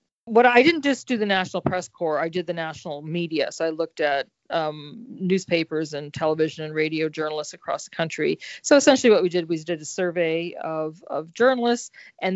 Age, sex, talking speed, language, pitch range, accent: 40-59, female, 200 wpm, English, 155-190 Hz, American